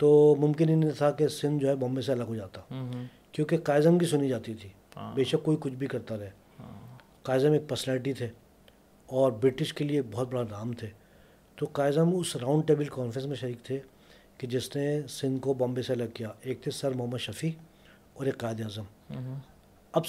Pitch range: 125-160 Hz